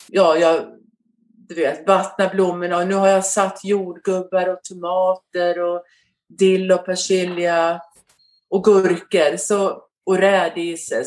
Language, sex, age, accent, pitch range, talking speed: Swedish, female, 40-59, native, 175-215 Hz, 125 wpm